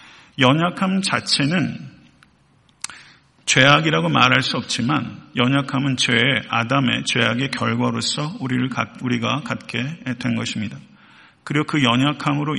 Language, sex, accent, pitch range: Korean, male, native, 120-145 Hz